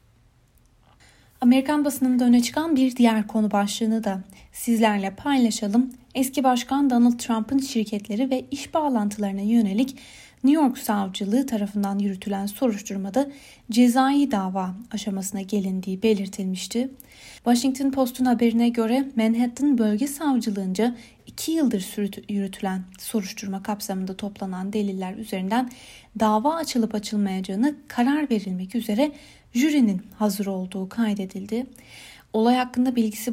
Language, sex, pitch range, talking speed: Turkish, female, 200-250 Hz, 105 wpm